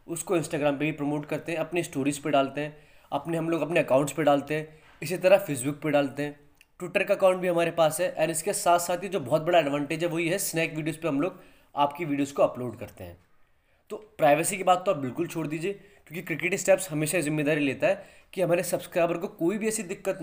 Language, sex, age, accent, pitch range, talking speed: Hindi, male, 20-39, native, 150-185 Hz, 235 wpm